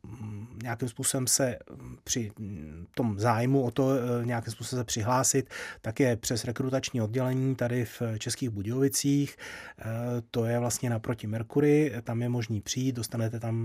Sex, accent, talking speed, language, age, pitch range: male, native, 140 wpm, Czech, 30-49, 115-130 Hz